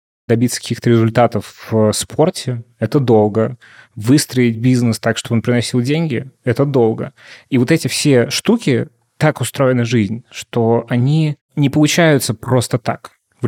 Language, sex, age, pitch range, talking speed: Russian, male, 20-39, 115-140 Hz, 140 wpm